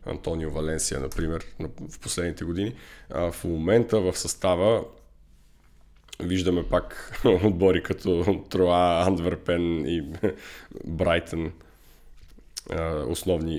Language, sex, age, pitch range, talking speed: Bulgarian, male, 20-39, 85-95 Hz, 85 wpm